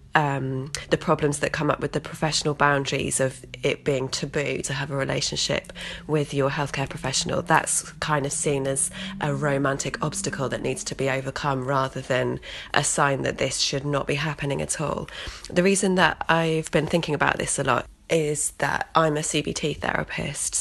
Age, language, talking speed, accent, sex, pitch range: 20-39, English, 185 wpm, British, female, 140-165 Hz